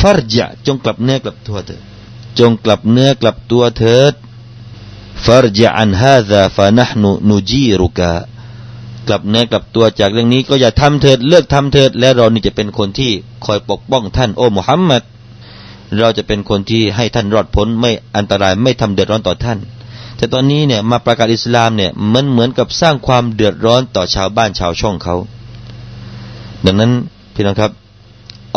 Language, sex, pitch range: Thai, male, 105-125 Hz